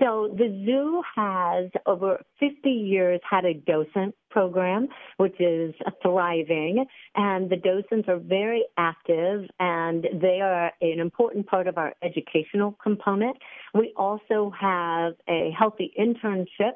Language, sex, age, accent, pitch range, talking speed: English, female, 50-69, American, 170-210 Hz, 130 wpm